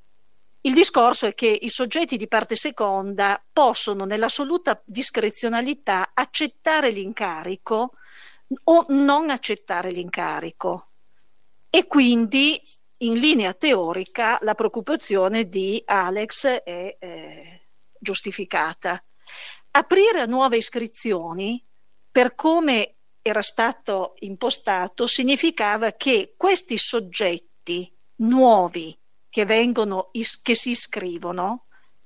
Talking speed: 90 wpm